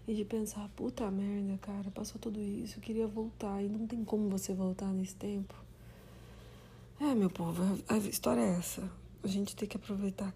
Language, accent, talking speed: Portuguese, Brazilian, 185 wpm